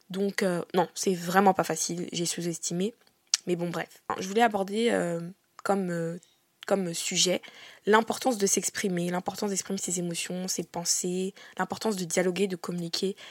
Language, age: French, 20-39